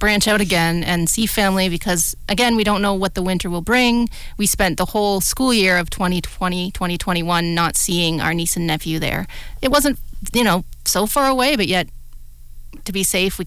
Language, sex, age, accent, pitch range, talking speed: English, female, 30-49, American, 170-200 Hz, 200 wpm